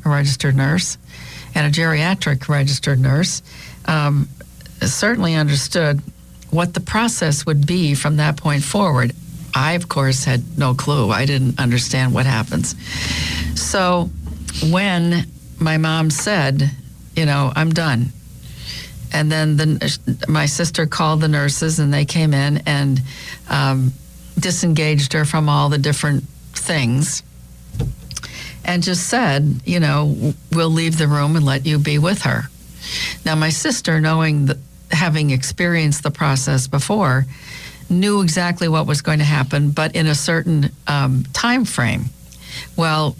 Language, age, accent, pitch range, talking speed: English, 50-69, American, 135-160 Hz, 140 wpm